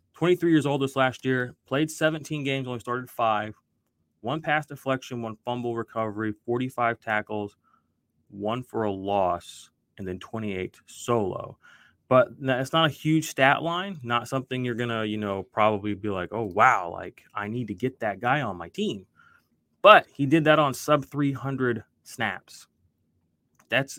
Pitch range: 105-130 Hz